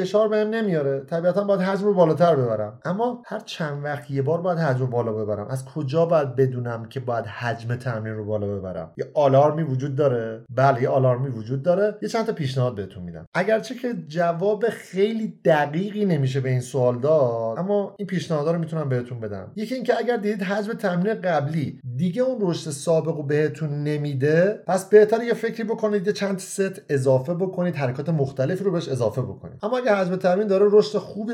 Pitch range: 135-200 Hz